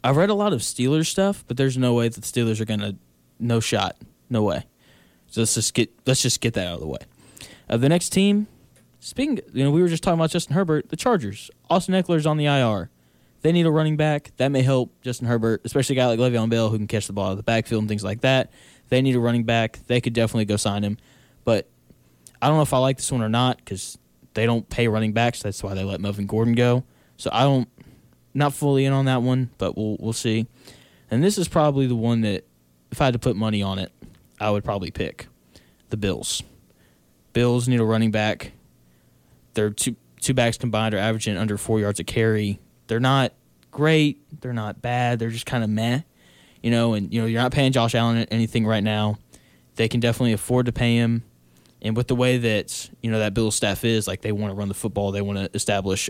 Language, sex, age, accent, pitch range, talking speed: English, male, 10-29, American, 105-130 Hz, 240 wpm